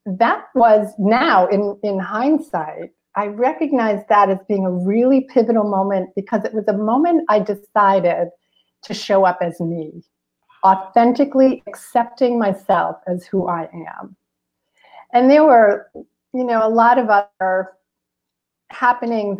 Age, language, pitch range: 50-69, English, 180-235 Hz